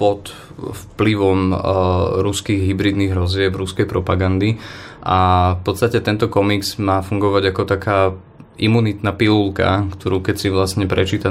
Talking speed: 125 wpm